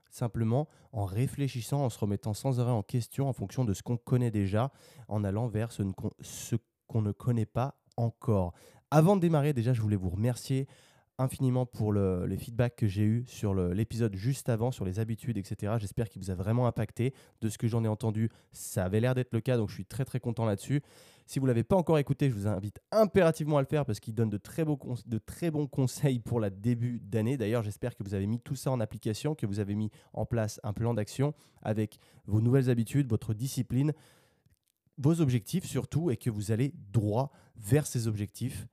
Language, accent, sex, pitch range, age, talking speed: French, French, male, 110-130 Hz, 20-39, 215 wpm